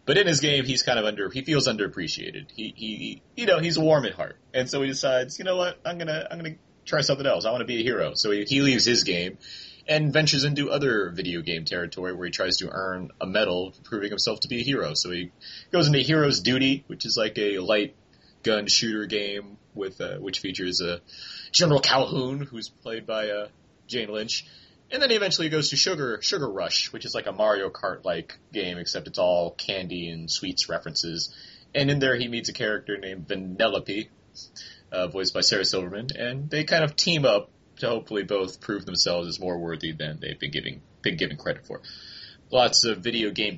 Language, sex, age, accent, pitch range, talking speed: English, male, 30-49, American, 90-145 Hz, 220 wpm